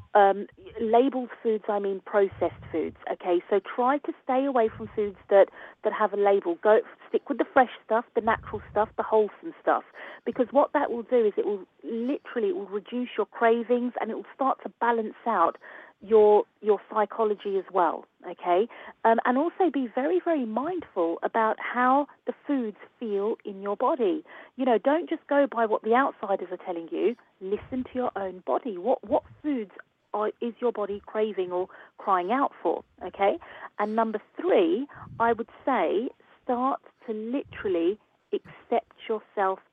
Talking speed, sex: 170 wpm, female